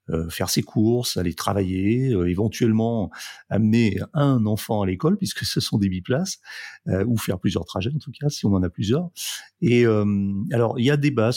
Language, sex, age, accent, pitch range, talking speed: French, male, 40-59, French, 95-120 Hz, 195 wpm